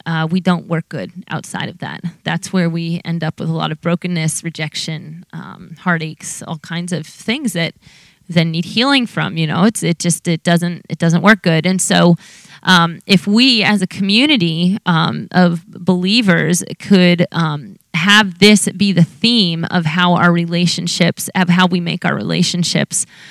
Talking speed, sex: 180 wpm, female